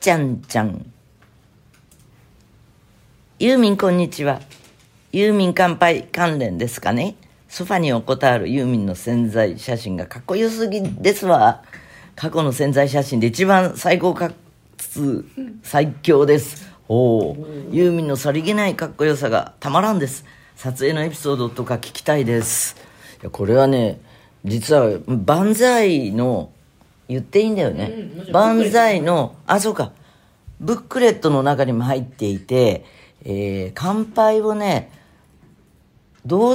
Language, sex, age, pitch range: Japanese, female, 40-59, 115-180 Hz